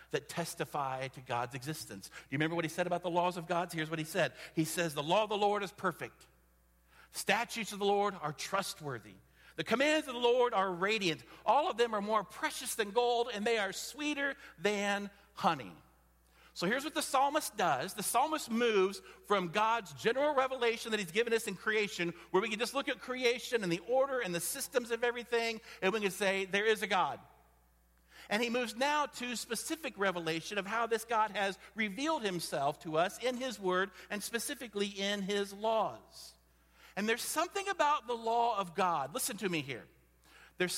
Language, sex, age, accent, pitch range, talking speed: English, male, 50-69, American, 150-230 Hz, 200 wpm